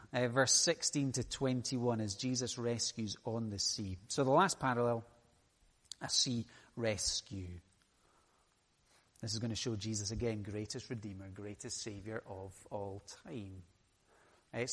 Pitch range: 115-155 Hz